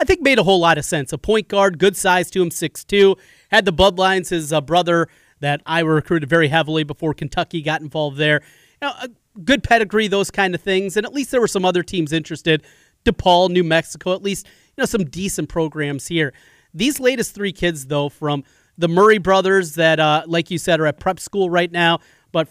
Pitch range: 160-200 Hz